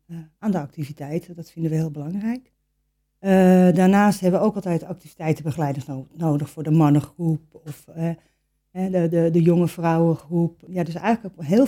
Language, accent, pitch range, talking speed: Dutch, Dutch, 155-195 Hz, 170 wpm